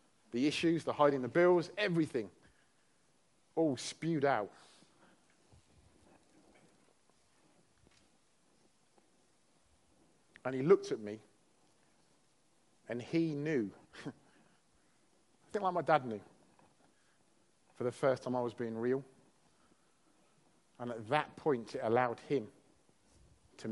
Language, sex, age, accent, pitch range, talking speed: English, male, 40-59, British, 120-150 Hz, 100 wpm